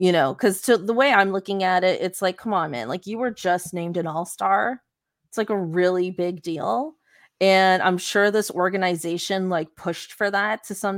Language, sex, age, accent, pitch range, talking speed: English, female, 20-39, American, 180-215 Hz, 220 wpm